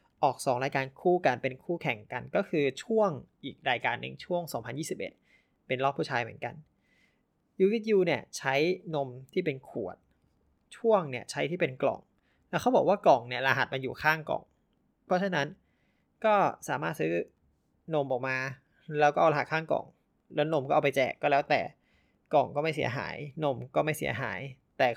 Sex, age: male, 20-39